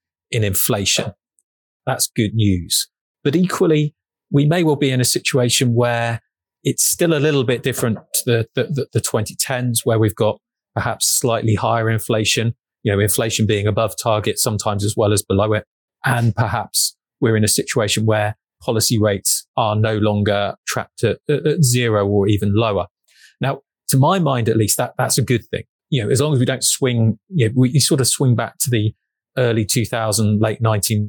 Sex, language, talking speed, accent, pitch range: male, English, 185 wpm, British, 105-125 Hz